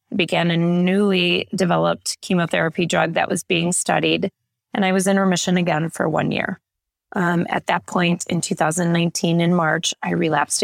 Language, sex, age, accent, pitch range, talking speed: English, female, 20-39, American, 160-180 Hz, 165 wpm